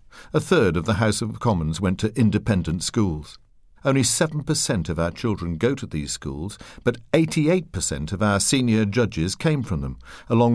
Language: English